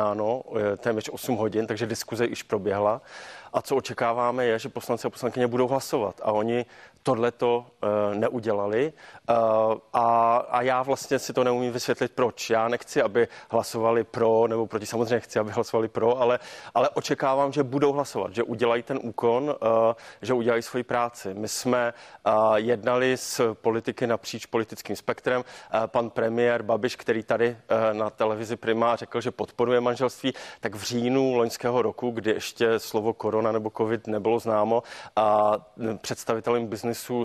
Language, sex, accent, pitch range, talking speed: Czech, male, native, 110-120 Hz, 150 wpm